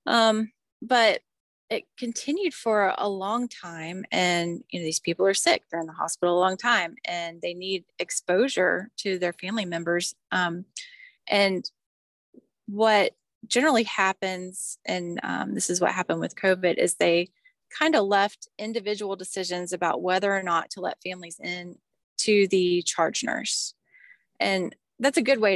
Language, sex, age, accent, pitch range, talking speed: English, female, 30-49, American, 175-220 Hz, 155 wpm